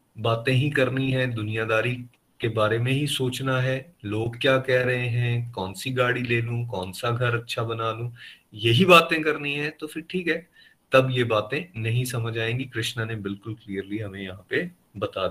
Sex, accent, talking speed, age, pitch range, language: male, native, 190 wpm, 30-49, 115-135 Hz, Hindi